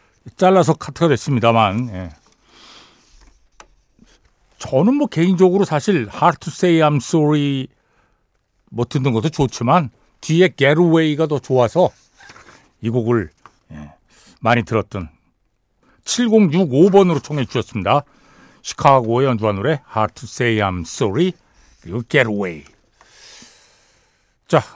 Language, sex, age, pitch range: Korean, male, 60-79, 110-175 Hz